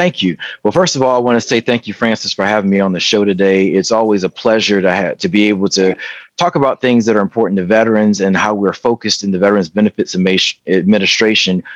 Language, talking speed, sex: English, 240 wpm, male